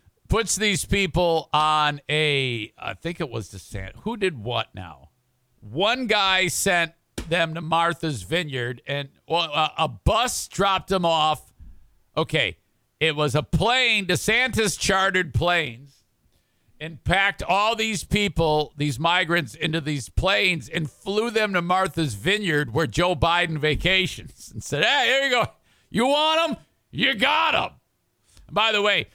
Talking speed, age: 145 wpm, 50-69